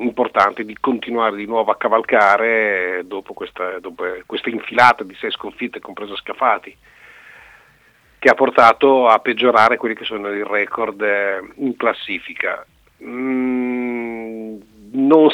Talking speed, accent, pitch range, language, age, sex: 115 wpm, native, 105-135 Hz, Italian, 40-59, male